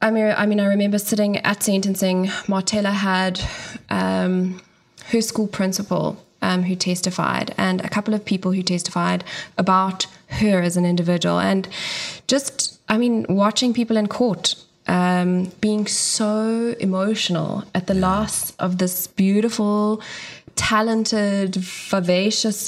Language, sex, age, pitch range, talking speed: English, female, 10-29, 180-210 Hz, 125 wpm